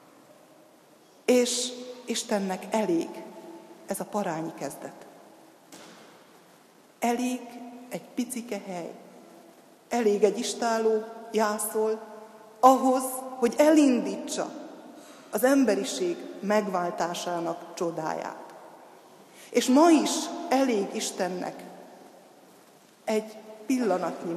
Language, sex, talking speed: Hungarian, female, 70 wpm